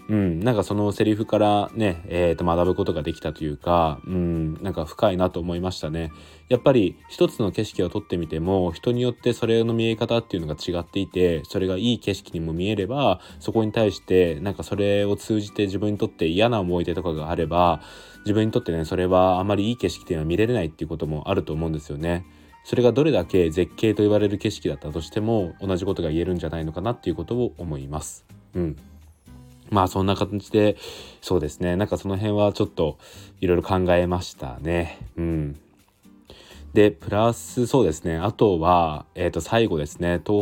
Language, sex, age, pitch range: Japanese, male, 20-39, 85-105 Hz